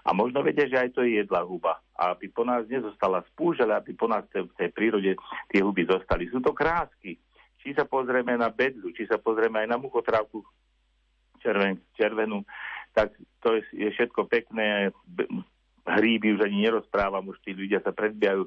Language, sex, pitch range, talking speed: Slovak, male, 95-120 Hz, 180 wpm